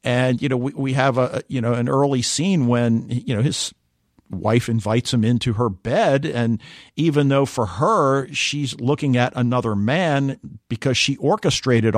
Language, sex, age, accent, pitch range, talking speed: English, male, 50-69, American, 110-135 Hz, 170 wpm